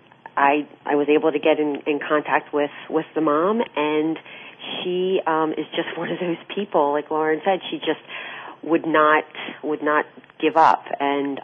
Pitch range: 145-165 Hz